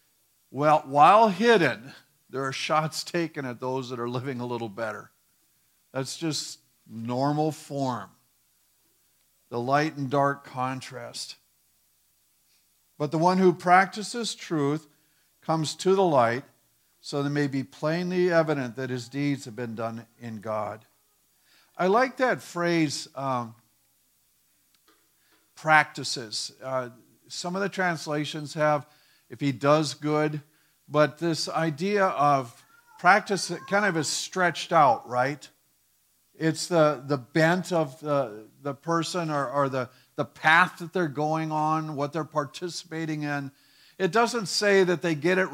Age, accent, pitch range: 50-69, American, 135-170 Hz